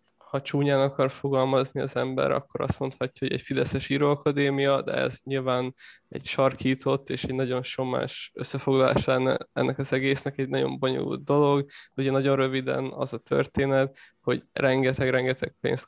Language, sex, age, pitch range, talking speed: Hungarian, male, 20-39, 130-140 Hz, 145 wpm